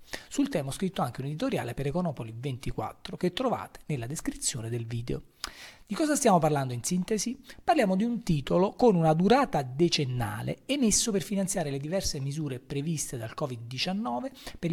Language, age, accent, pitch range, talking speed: Italian, 40-59, native, 130-195 Hz, 160 wpm